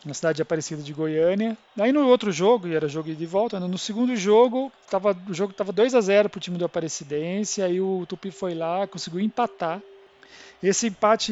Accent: Brazilian